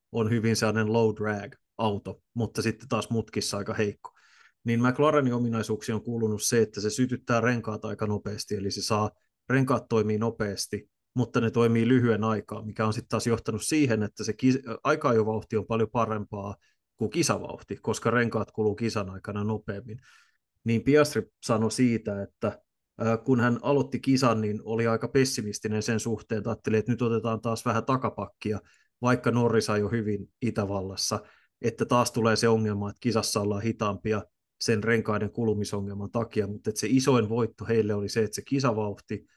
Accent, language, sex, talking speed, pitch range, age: native, Finnish, male, 165 wpm, 105-120 Hz, 30-49